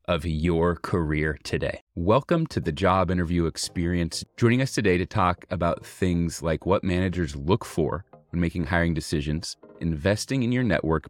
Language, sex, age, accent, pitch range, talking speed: English, male, 30-49, American, 80-100 Hz, 160 wpm